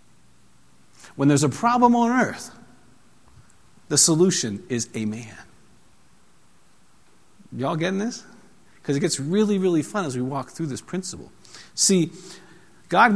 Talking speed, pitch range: 130 wpm, 120-165 Hz